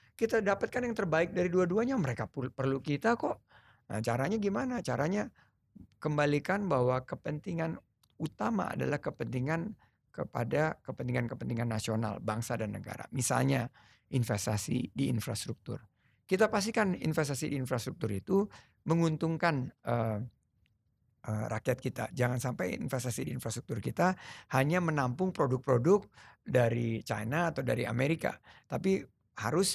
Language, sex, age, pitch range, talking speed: Indonesian, male, 50-69, 120-165 Hz, 115 wpm